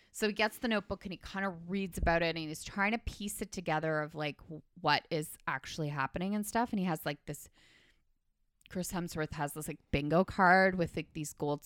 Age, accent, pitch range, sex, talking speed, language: 20-39, American, 150-185 Hz, female, 220 wpm, English